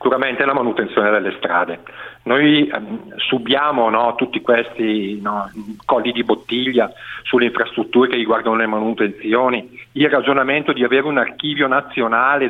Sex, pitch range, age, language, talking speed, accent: male, 125-165 Hz, 50-69, Italian, 125 wpm, native